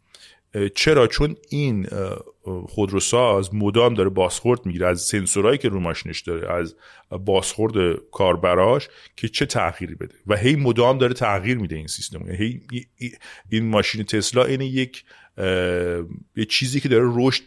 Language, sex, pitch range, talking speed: Persian, male, 95-120 Hz, 135 wpm